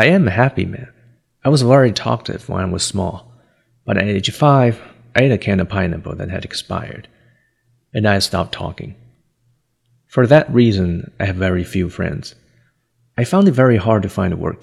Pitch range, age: 95-130 Hz, 30-49